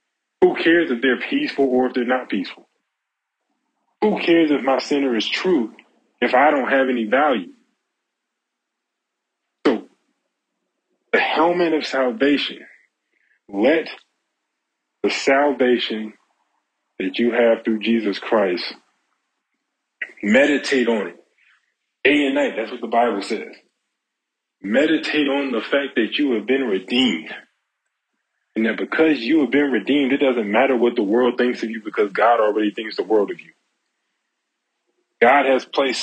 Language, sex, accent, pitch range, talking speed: English, male, American, 125-205 Hz, 140 wpm